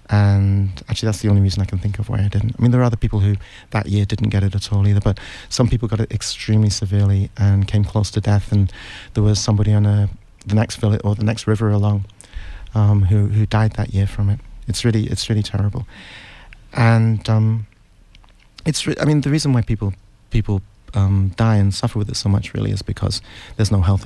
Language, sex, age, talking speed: English, male, 30-49, 225 wpm